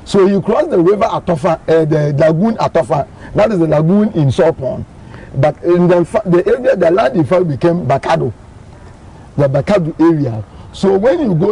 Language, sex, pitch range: English, male, 145-185 Hz